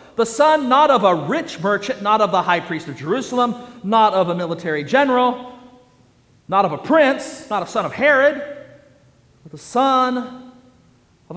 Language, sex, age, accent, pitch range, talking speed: English, male, 50-69, American, 145-230 Hz, 170 wpm